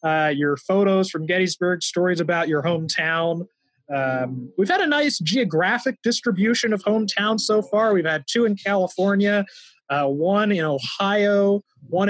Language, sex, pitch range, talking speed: English, male, 155-210 Hz, 145 wpm